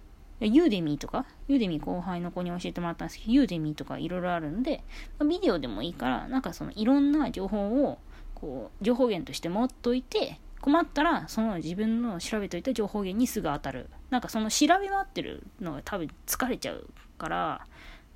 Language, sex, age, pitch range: Japanese, female, 20-39, 165-260 Hz